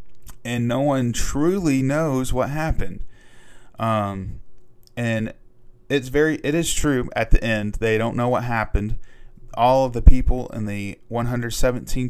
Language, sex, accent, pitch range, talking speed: English, male, American, 100-120 Hz, 145 wpm